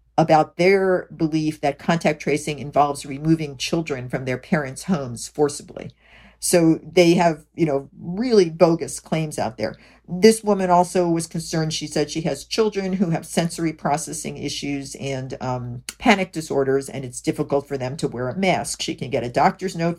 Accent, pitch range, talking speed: American, 140-180 Hz, 175 wpm